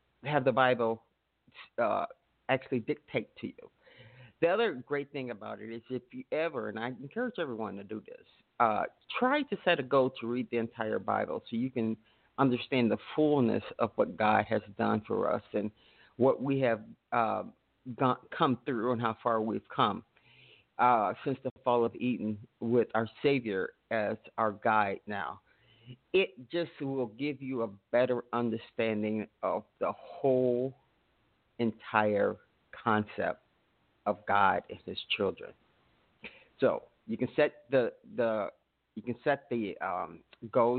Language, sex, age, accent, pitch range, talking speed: English, male, 40-59, American, 115-135 Hz, 155 wpm